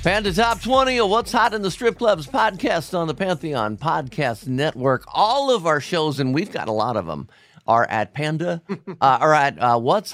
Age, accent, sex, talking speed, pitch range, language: 50-69, American, male, 205 wpm, 110-165 Hz, English